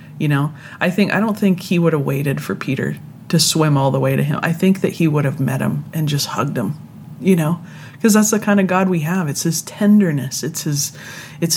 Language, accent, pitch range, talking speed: English, American, 140-165 Hz, 250 wpm